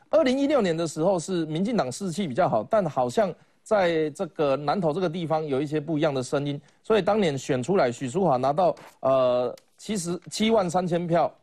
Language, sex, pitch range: Chinese, male, 155-220 Hz